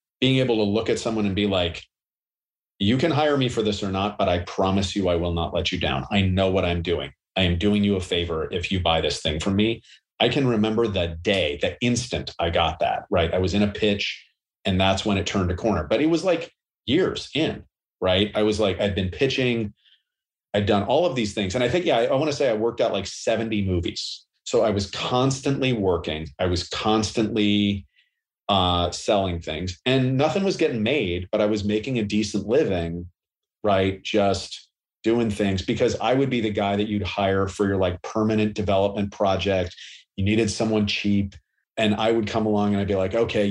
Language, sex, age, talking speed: English, male, 40-59, 215 wpm